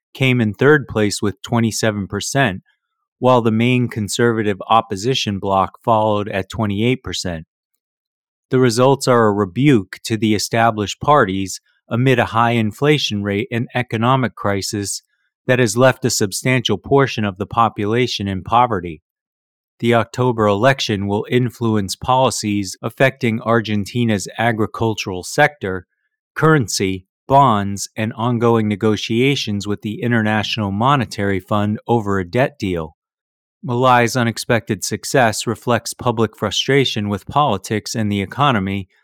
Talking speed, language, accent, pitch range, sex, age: 120 wpm, English, American, 100-125 Hz, male, 30-49